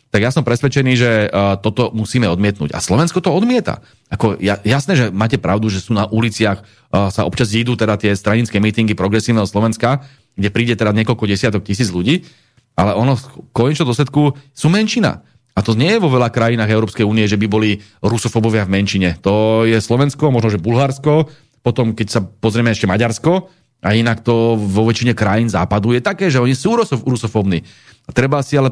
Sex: male